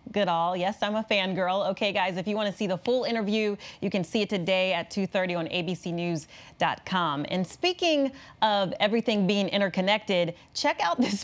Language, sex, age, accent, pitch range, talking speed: English, female, 30-49, American, 180-215 Hz, 180 wpm